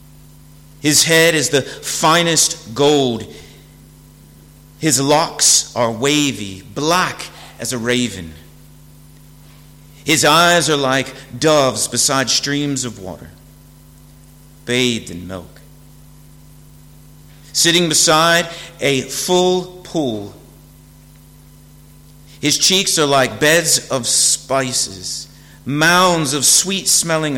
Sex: male